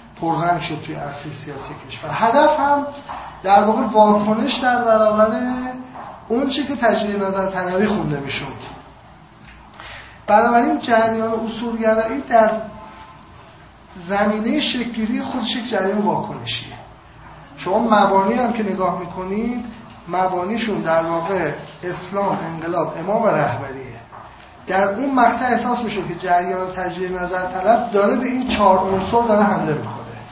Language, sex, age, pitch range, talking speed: Persian, male, 30-49, 180-225 Hz, 120 wpm